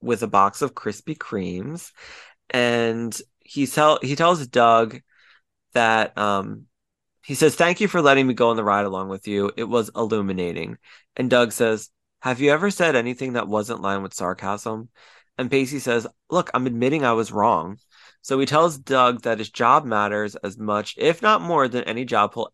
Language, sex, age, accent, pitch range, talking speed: English, male, 20-39, American, 105-145 Hz, 185 wpm